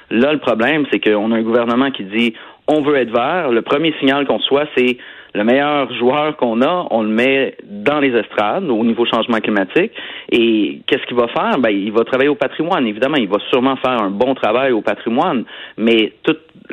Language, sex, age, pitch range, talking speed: French, male, 30-49, 115-140 Hz, 210 wpm